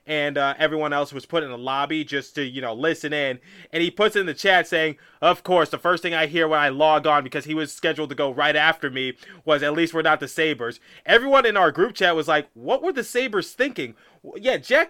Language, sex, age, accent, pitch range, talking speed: English, male, 20-39, American, 145-175 Hz, 255 wpm